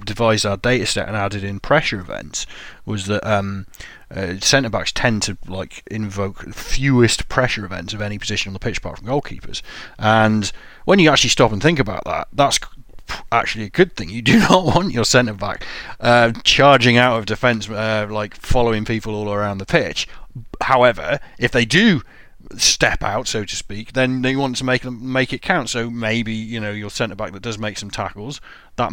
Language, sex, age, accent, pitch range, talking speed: English, male, 30-49, British, 105-130 Hz, 200 wpm